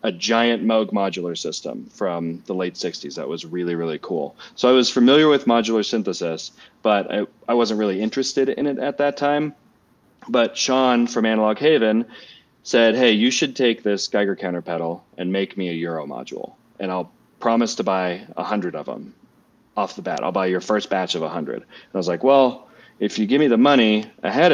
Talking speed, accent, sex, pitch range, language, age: 200 wpm, American, male, 95-120 Hz, English, 30-49